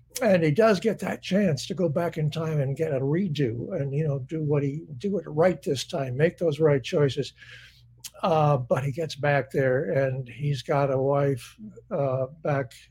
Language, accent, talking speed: English, American, 200 wpm